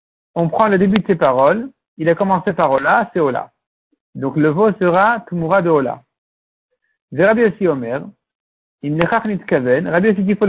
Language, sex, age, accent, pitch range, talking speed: French, male, 60-79, French, 165-215 Hz, 185 wpm